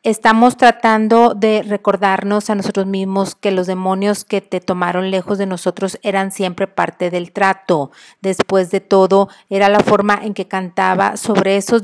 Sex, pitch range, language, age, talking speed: female, 190-215 Hz, Spanish, 40-59, 160 wpm